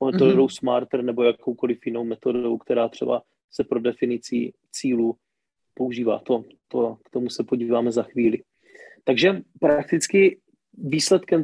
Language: Czech